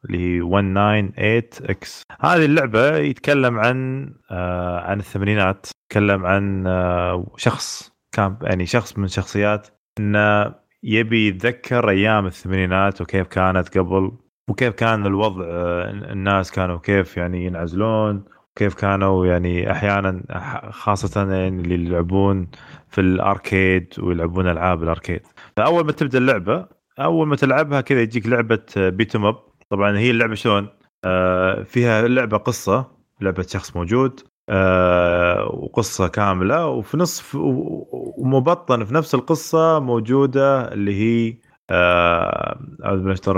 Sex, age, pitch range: male, 20-39, 95-115 Hz